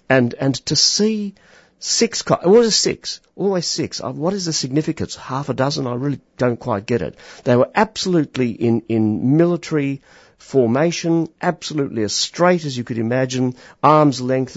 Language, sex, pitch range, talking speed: English, male, 100-150 Hz, 175 wpm